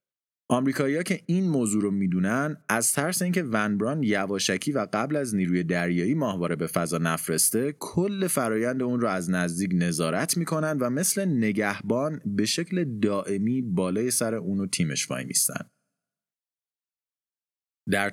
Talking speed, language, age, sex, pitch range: 135 wpm, Persian, 30-49, male, 90-120 Hz